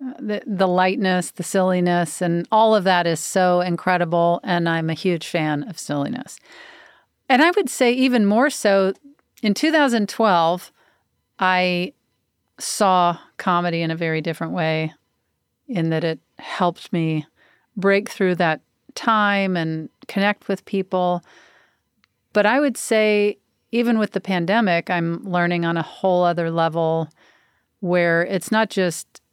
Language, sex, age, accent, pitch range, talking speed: English, female, 40-59, American, 170-200 Hz, 135 wpm